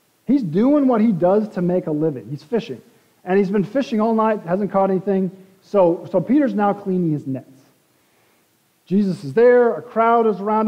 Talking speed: 190 wpm